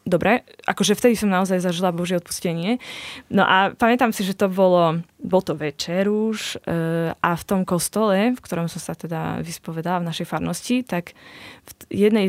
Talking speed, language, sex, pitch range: 175 wpm, Slovak, female, 165-205 Hz